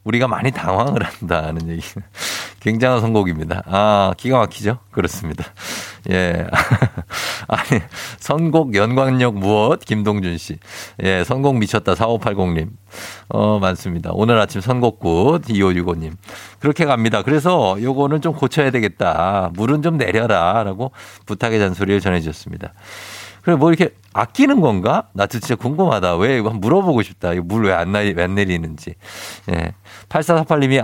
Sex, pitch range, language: male, 95-130 Hz, Korean